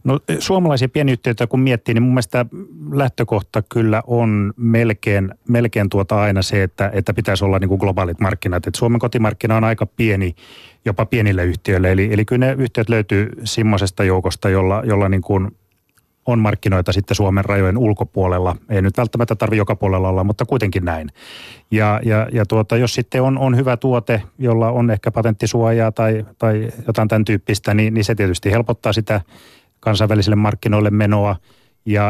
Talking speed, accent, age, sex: 170 wpm, native, 30-49, male